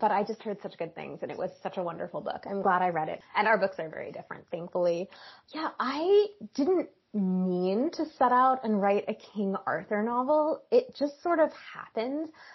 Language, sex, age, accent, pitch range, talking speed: English, female, 20-39, American, 185-250 Hz, 210 wpm